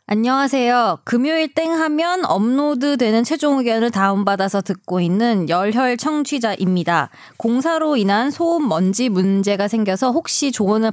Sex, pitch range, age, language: female, 185-265 Hz, 20-39, Korean